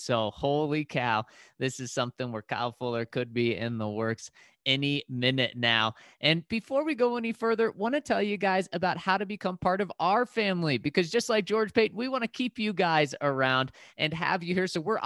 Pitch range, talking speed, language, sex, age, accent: 120-180 Hz, 220 wpm, English, male, 30-49, American